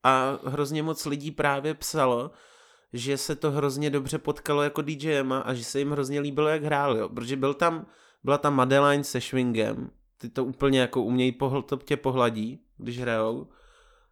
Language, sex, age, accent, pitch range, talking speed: Czech, male, 20-39, native, 125-145 Hz, 170 wpm